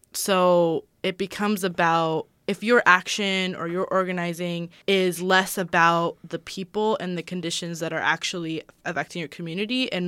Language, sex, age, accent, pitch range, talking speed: English, female, 20-39, American, 170-200 Hz, 150 wpm